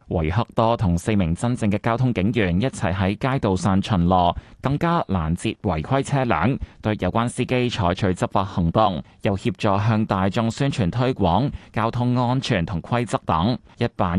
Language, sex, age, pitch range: Chinese, male, 20-39, 95-125 Hz